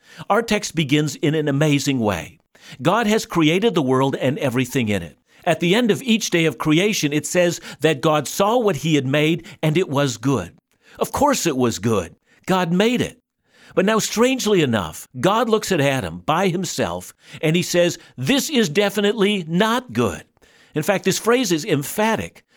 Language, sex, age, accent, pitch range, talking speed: English, male, 60-79, American, 145-200 Hz, 185 wpm